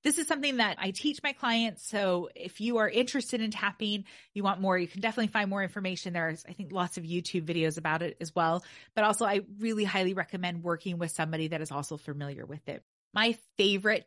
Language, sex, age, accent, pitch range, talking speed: English, female, 20-39, American, 175-215 Hz, 220 wpm